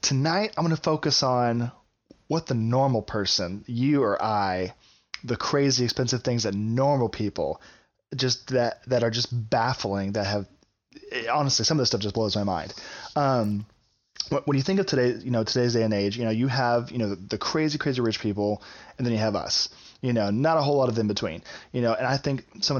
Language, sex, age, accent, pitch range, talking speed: English, male, 20-39, American, 105-135 Hz, 215 wpm